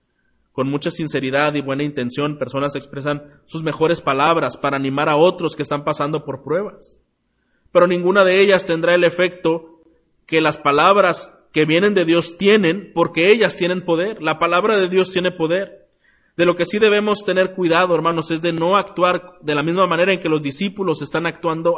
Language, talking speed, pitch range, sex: Spanish, 185 wpm, 140-175 Hz, male